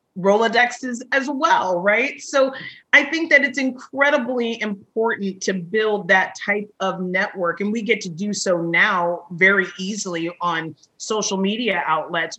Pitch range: 195-240 Hz